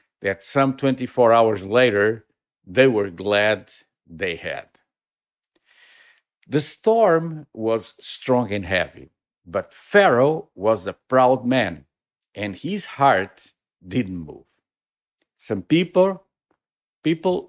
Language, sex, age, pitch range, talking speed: English, male, 50-69, 105-135 Hz, 105 wpm